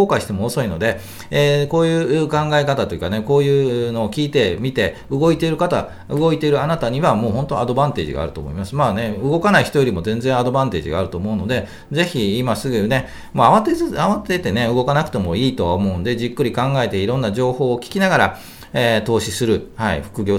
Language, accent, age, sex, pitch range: Japanese, native, 40-59, male, 95-135 Hz